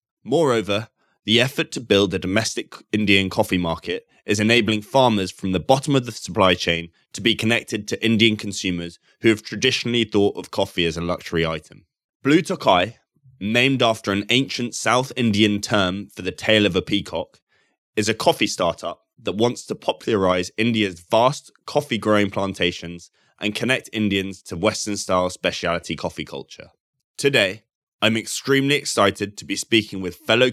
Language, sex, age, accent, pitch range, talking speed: English, male, 20-39, British, 90-115 Hz, 155 wpm